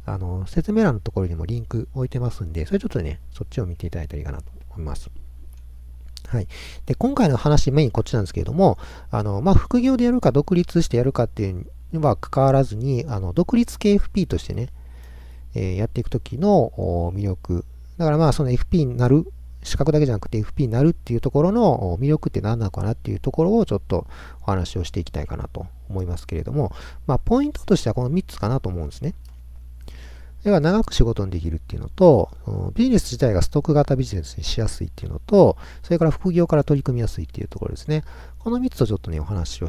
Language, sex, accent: Japanese, male, native